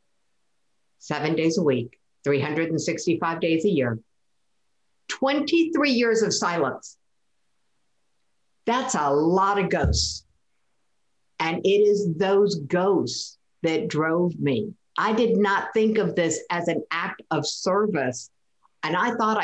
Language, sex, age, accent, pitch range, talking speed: English, female, 50-69, American, 170-220 Hz, 120 wpm